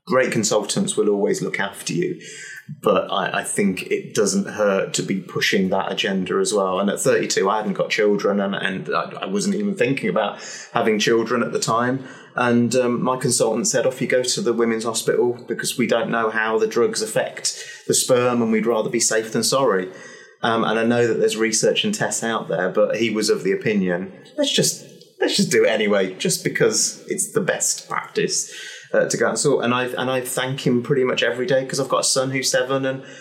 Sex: male